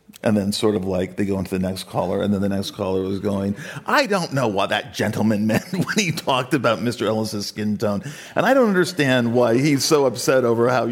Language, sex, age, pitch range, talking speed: English, male, 50-69, 105-150 Hz, 235 wpm